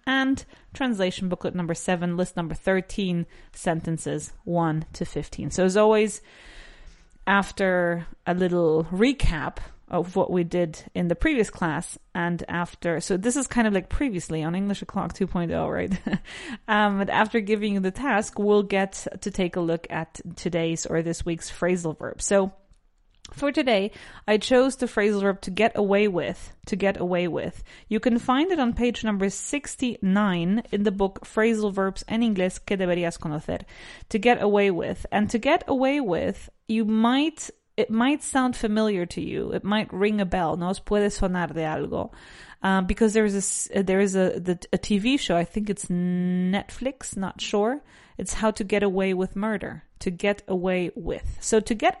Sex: female